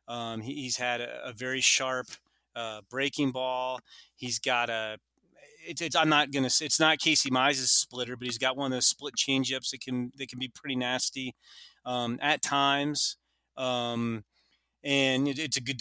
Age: 30-49